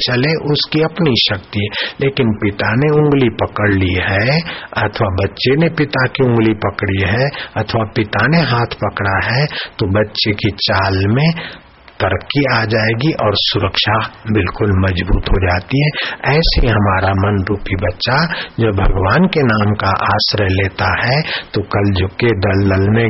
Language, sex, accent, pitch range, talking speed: Hindi, male, native, 100-115 Hz, 150 wpm